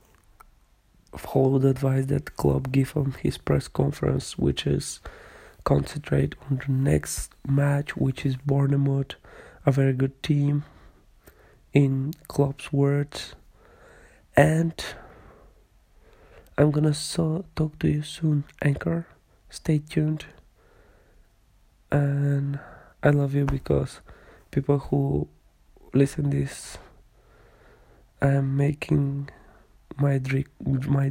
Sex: male